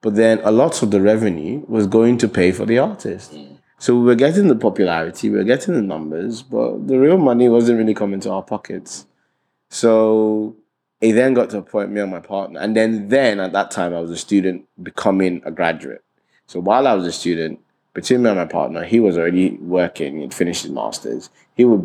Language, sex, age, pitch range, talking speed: English, male, 20-39, 85-110 Hz, 220 wpm